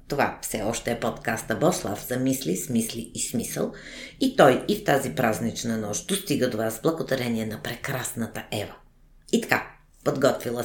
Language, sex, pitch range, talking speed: Bulgarian, female, 110-130 Hz, 160 wpm